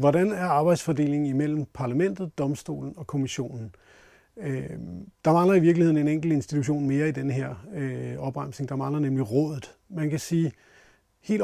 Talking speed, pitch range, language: 145 wpm, 135-170 Hz, Danish